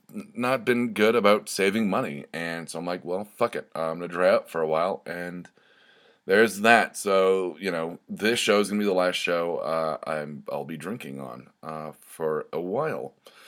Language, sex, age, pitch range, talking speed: English, male, 30-49, 85-105 Hz, 200 wpm